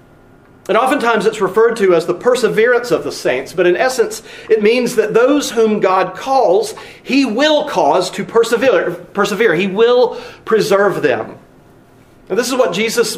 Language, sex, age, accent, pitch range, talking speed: English, male, 40-59, American, 190-290 Hz, 165 wpm